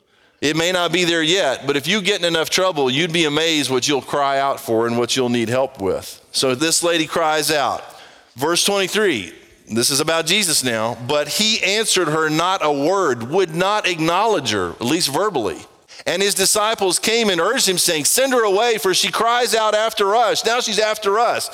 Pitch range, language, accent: 155-210 Hz, English, American